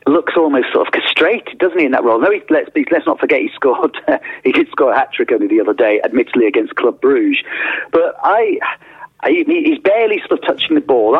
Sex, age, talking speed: male, 40-59, 220 wpm